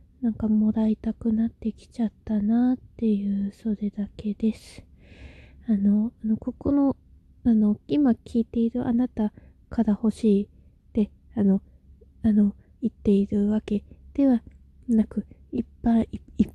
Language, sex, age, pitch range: Japanese, female, 20-39, 210-235 Hz